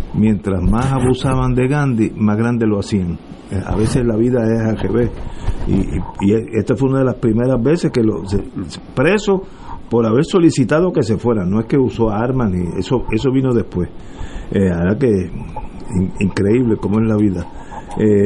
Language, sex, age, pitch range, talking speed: Spanish, male, 50-69, 100-135 Hz, 180 wpm